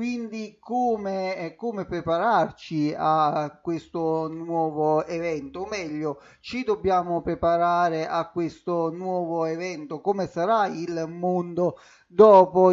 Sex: male